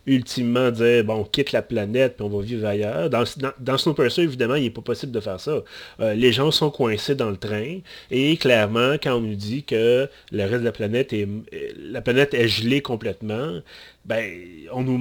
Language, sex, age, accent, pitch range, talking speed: French, male, 30-49, Canadian, 105-130 Hz, 205 wpm